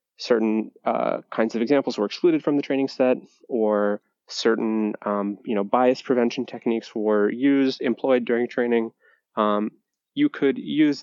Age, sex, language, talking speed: 20-39, male, English, 150 wpm